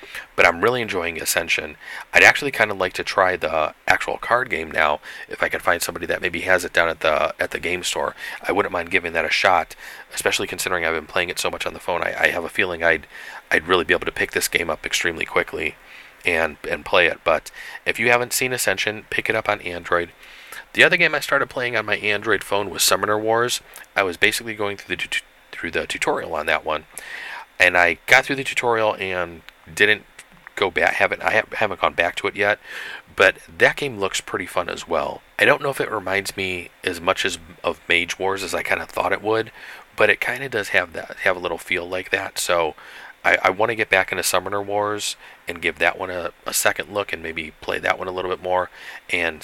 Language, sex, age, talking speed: English, male, 40-59, 235 wpm